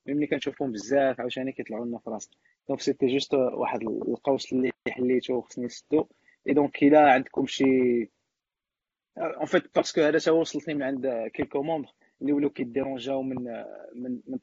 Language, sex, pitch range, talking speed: Arabic, male, 130-145 Hz, 160 wpm